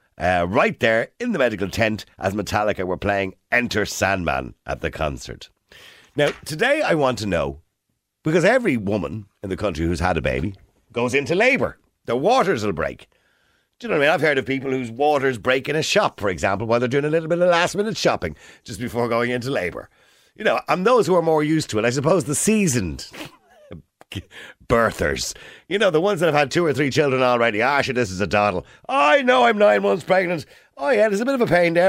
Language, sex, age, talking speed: English, male, 50-69, 225 wpm